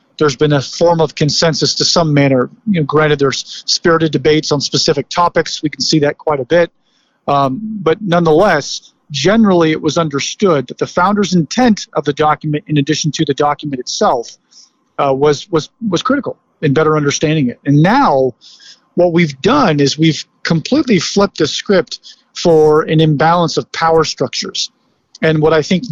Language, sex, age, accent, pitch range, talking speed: English, male, 40-59, American, 150-185 Hz, 175 wpm